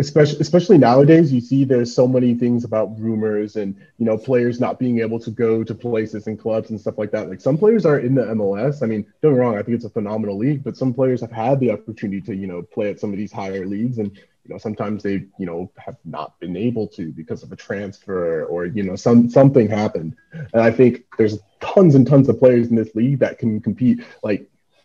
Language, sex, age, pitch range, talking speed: English, male, 20-39, 105-125 Hz, 245 wpm